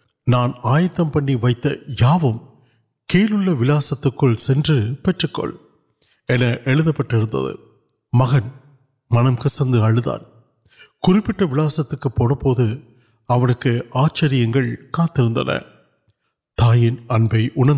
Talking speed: 45 wpm